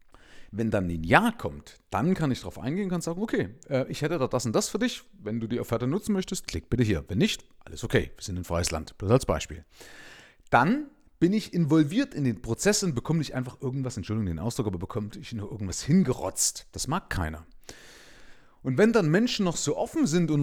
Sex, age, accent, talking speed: male, 40-59, German, 225 wpm